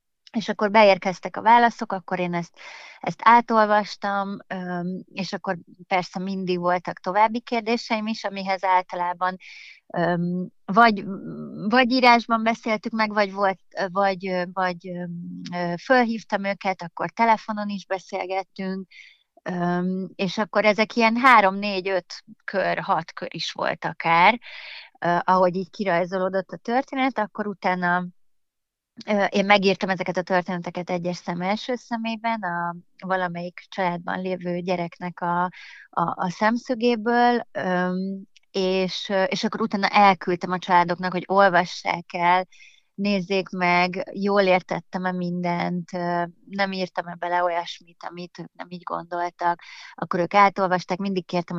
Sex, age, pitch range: female, 30-49, 180-210 Hz